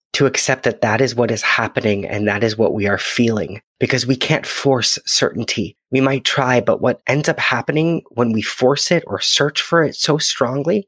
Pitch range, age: 105-130 Hz, 30-49